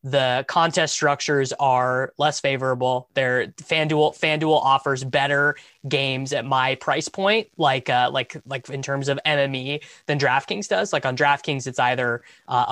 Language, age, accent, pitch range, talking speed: English, 20-39, American, 125-160 Hz, 155 wpm